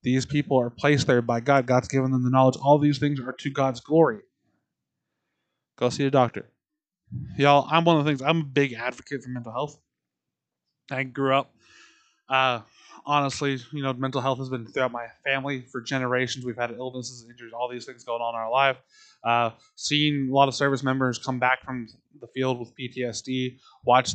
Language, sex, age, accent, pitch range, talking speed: English, male, 20-39, American, 125-145 Hz, 195 wpm